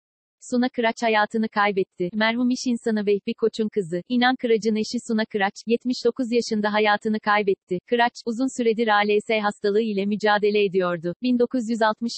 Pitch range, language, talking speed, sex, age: 200-230 Hz, Turkish, 140 wpm, female, 40-59